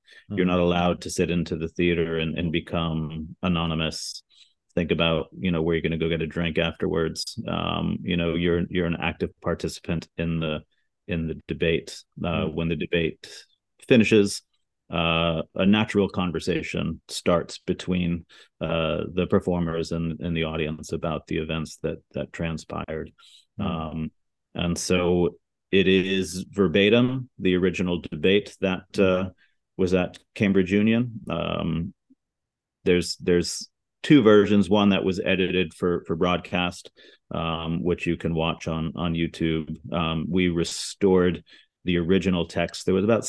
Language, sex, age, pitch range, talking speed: English, male, 30-49, 80-90 Hz, 145 wpm